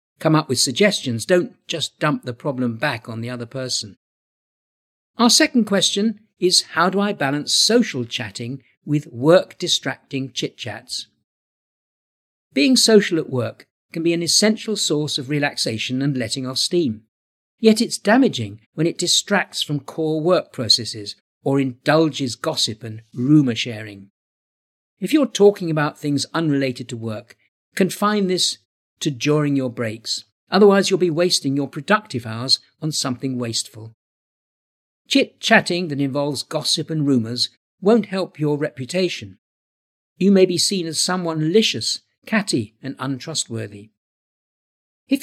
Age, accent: 50-69, British